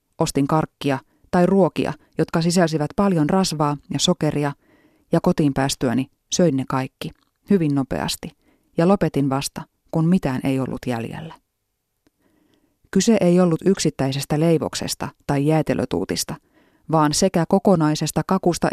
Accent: native